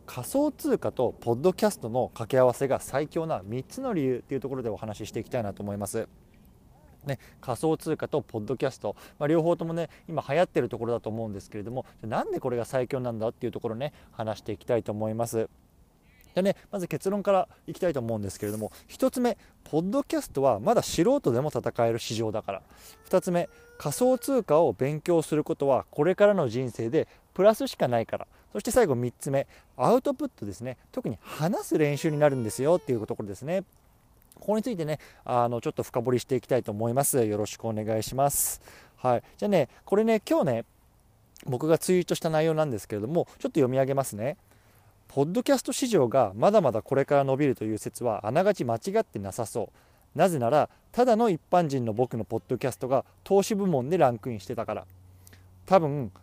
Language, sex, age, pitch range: Japanese, male, 20-39, 110-170 Hz